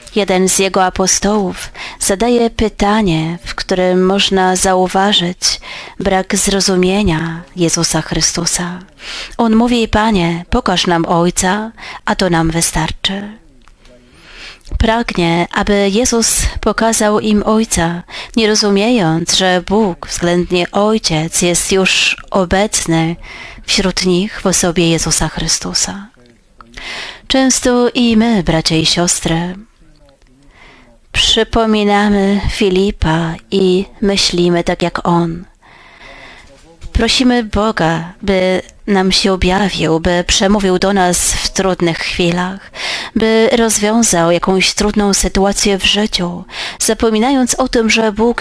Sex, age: female, 30-49